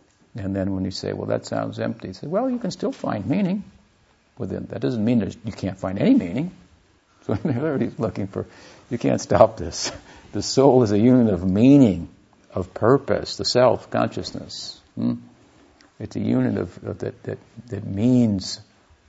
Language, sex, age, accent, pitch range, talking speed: English, male, 60-79, American, 95-115 Hz, 175 wpm